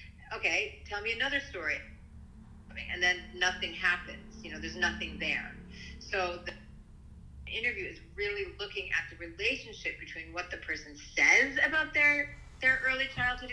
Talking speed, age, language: 145 wpm, 40-59, English